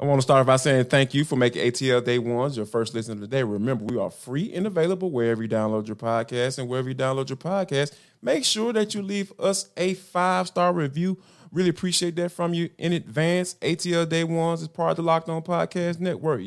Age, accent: 20-39, American